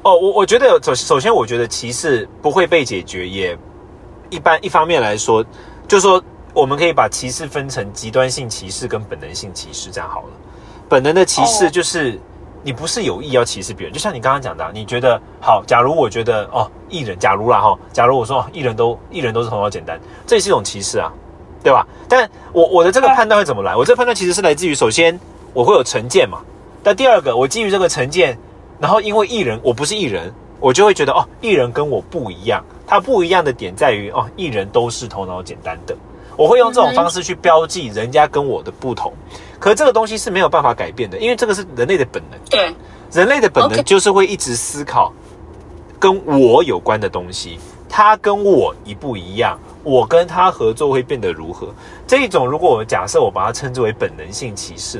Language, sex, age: Chinese, male, 30-49